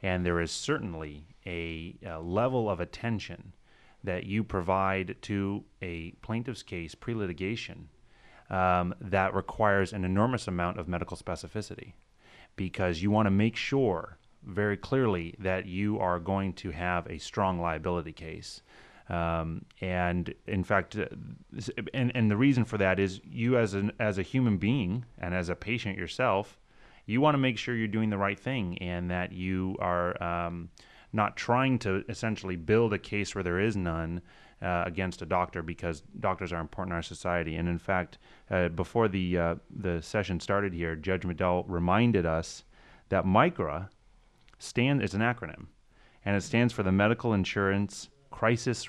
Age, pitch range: 30-49, 90-105 Hz